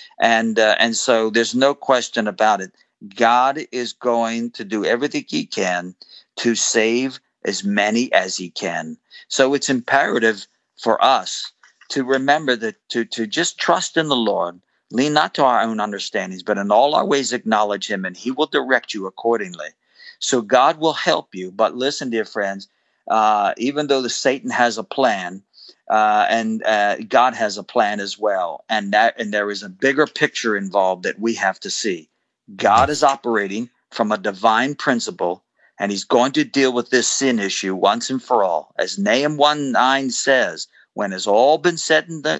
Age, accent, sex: 50-69, American, male